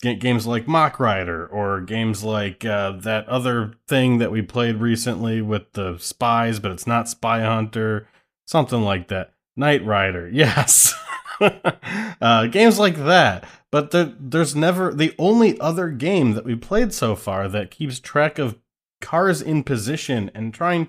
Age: 20-39